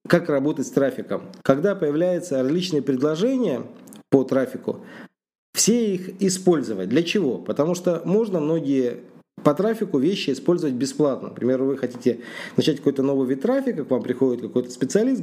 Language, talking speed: Russian, 145 wpm